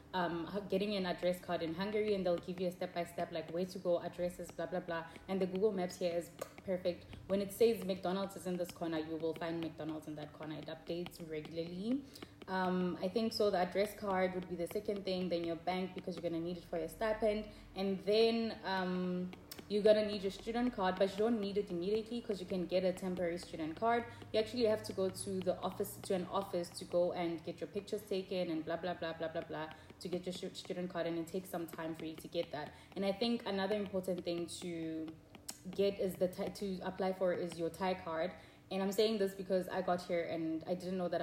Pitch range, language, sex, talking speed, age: 170-200 Hz, English, female, 235 wpm, 20-39